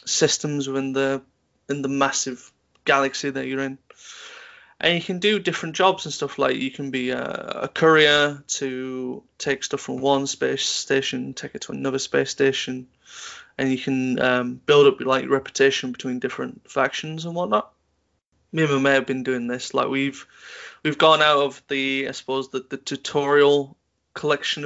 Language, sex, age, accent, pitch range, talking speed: English, male, 20-39, British, 130-145 Hz, 175 wpm